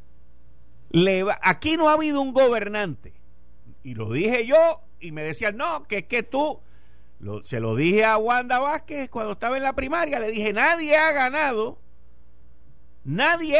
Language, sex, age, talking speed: Spanish, male, 50-69, 155 wpm